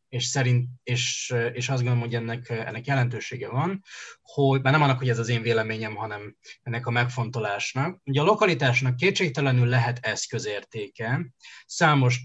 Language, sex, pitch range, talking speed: Hungarian, male, 115-135 Hz, 150 wpm